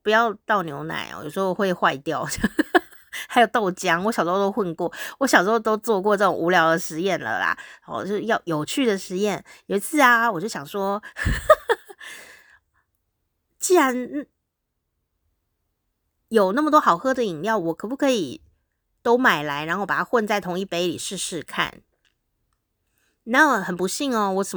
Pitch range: 165-225 Hz